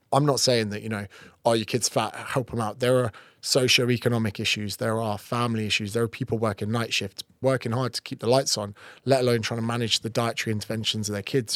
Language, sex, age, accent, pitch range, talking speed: English, male, 20-39, British, 110-135 Hz, 235 wpm